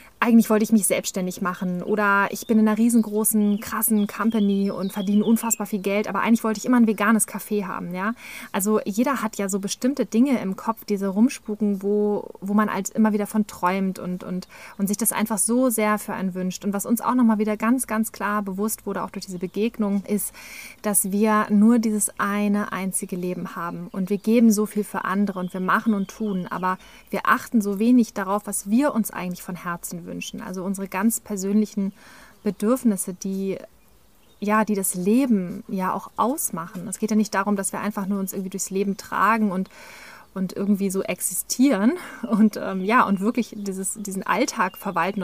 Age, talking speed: 20-39, 200 wpm